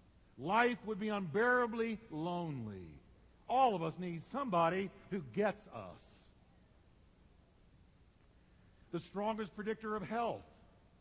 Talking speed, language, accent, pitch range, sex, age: 100 wpm, English, American, 160-225 Hz, male, 50-69